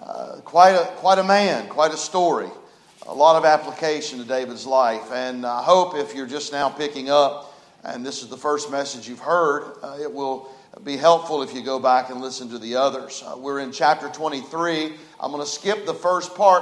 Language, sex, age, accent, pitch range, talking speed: English, male, 40-59, American, 145-200 Hz, 215 wpm